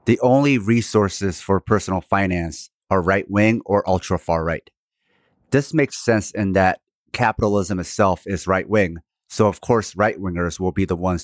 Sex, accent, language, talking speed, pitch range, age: male, American, English, 145 wpm, 90-110 Hz, 30-49